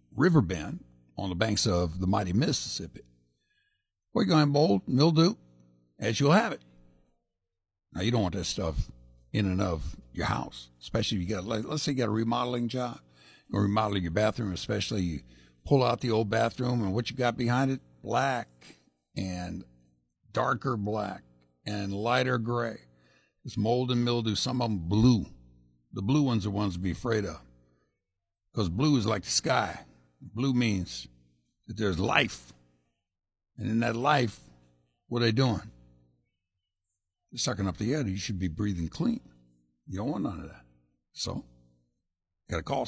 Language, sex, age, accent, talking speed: English, male, 60-79, American, 165 wpm